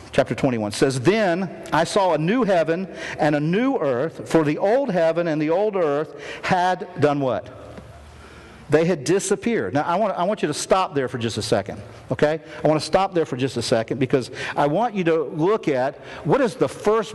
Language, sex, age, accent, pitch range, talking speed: English, male, 50-69, American, 145-190 Hz, 210 wpm